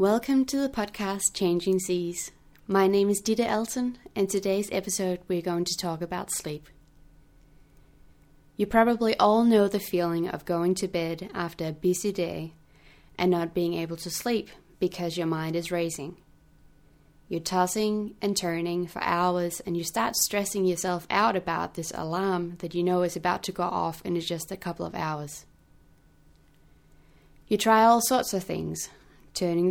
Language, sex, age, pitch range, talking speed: English, female, 20-39, 170-200 Hz, 165 wpm